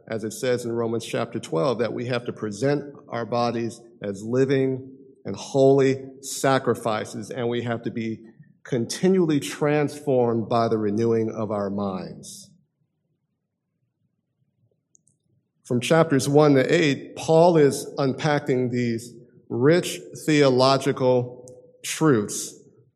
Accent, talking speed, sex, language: American, 115 wpm, male, English